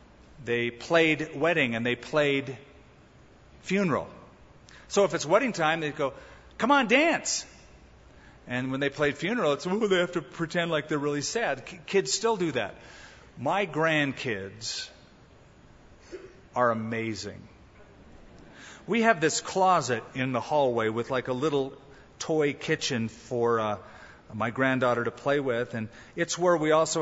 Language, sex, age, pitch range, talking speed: English, male, 40-59, 130-170 Hz, 140 wpm